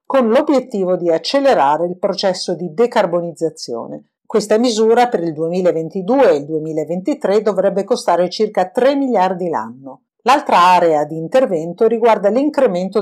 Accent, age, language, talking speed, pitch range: native, 50-69, Italian, 130 wpm, 175-230 Hz